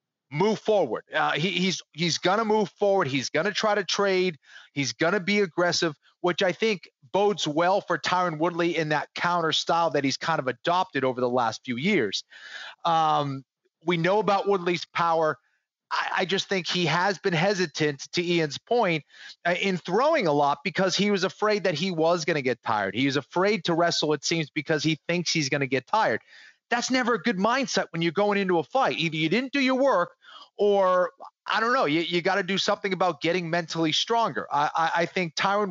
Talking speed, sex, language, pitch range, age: 210 wpm, male, English, 155-195 Hz, 30-49